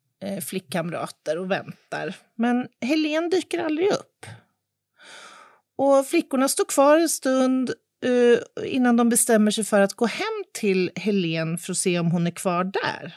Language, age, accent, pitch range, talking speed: Swedish, 40-59, native, 185-245 Hz, 155 wpm